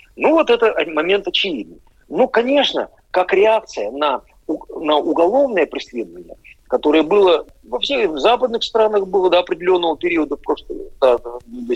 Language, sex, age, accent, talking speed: Russian, male, 50-69, native, 120 wpm